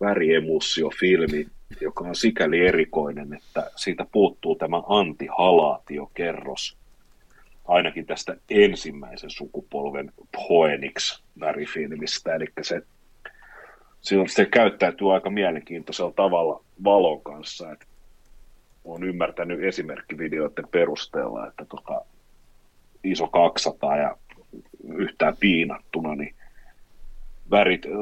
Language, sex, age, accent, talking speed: Finnish, male, 40-59, native, 90 wpm